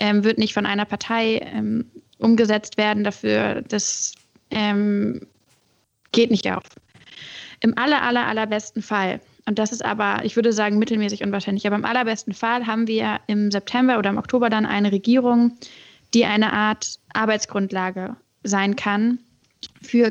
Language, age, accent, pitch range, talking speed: German, 10-29, German, 215-240 Hz, 150 wpm